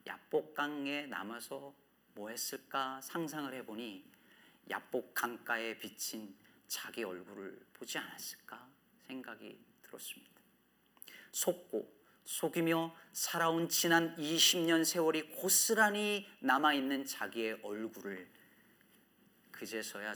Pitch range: 140-215 Hz